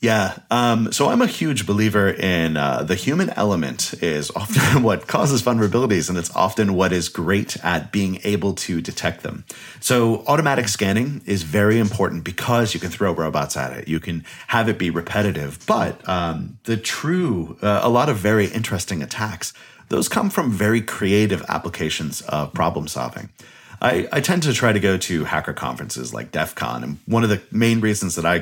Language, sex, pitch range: English, male, 85-115 Hz